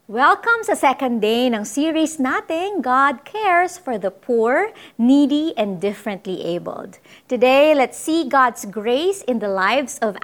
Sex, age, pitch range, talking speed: female, 30-49, 240-340 Hz, 145 wpm